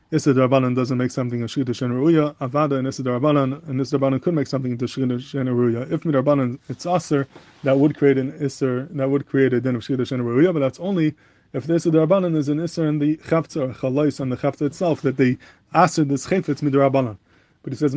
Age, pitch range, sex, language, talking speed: 20-39, 130-155 Hz, male, English, 205 wpm